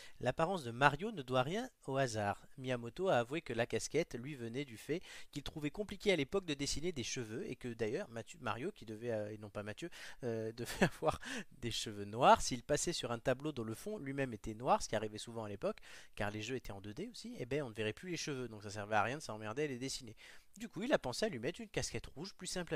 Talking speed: 265 wpm